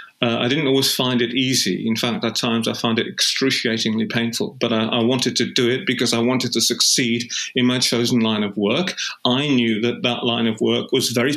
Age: 40-59